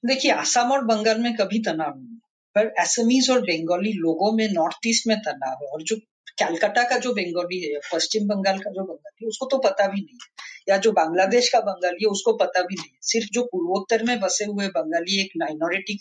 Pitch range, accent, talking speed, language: 170-230 Hz, native, 215 wpm, Hindi